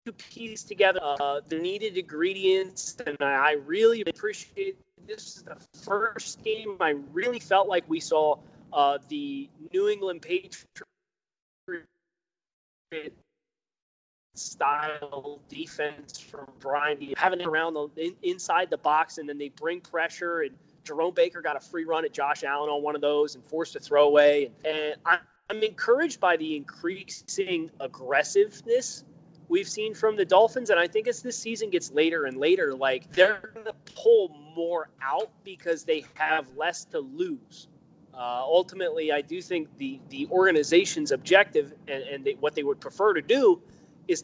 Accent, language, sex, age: American, English, male, 20-39